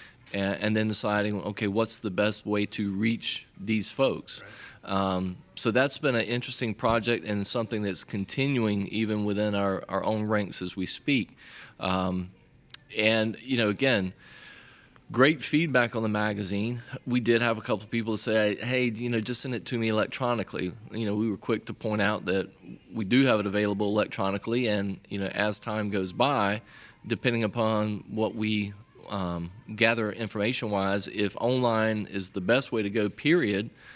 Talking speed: 170 wpm